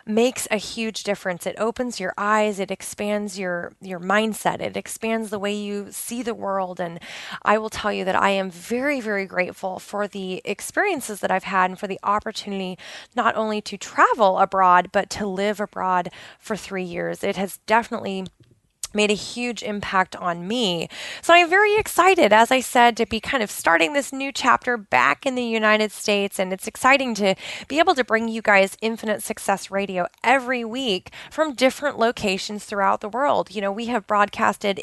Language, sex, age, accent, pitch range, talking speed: English, female, 20-39, American, 195-235 Hz, 190 wpm